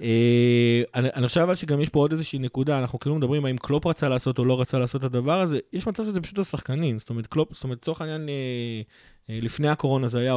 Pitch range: 120-150 Hz